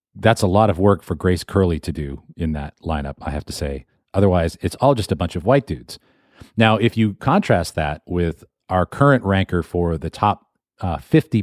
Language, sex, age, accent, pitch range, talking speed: English, male, 40-59, American, 85-110 Hz, 210 wpm